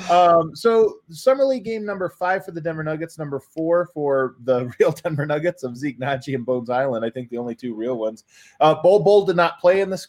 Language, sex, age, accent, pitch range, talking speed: English, male, 20-39, American, 130-170 Hz, 230 wpm